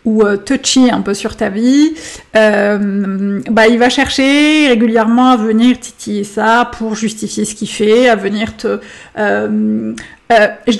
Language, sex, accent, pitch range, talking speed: French, female, French, 215-245 Hz, 155 wpm